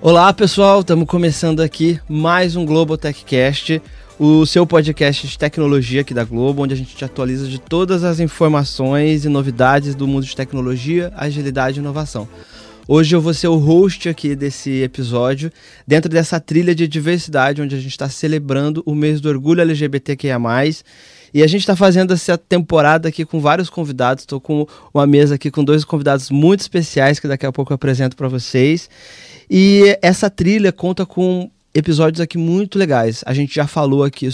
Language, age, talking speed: Portuguese, 20-39, 180 wpm